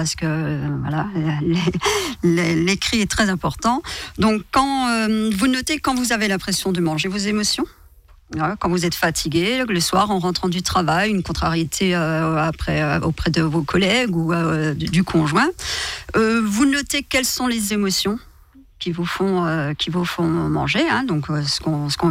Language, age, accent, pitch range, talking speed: French, 40-59, French, 165-215 Hz, 185 wpm